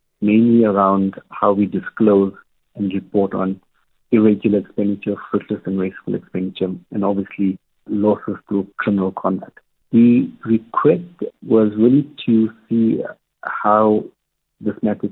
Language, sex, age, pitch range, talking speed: English, male, 50-69, 100-115 Hz, 115 wpm